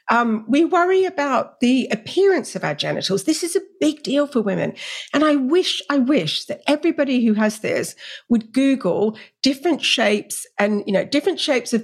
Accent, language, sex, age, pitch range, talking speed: British, English, female, 50-69, 210-335 Hz, 180 wpm